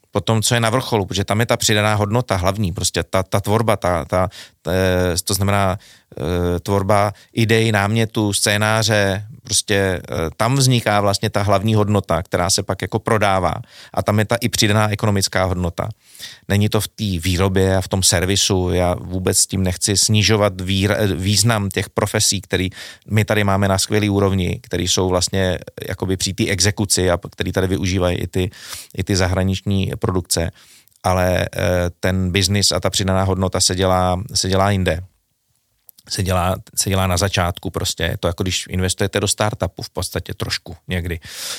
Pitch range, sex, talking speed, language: 95-105 Hz, male, 170 wpm, Czech